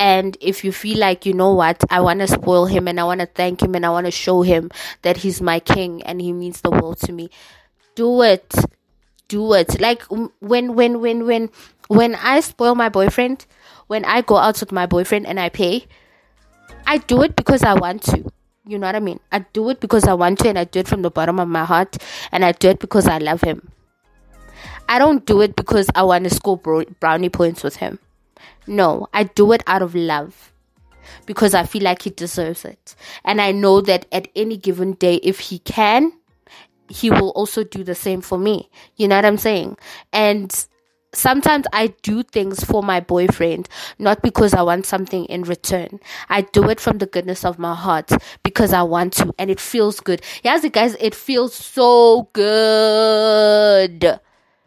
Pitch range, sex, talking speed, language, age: 180-220 Hz, female, 205 wpm, English, 20-39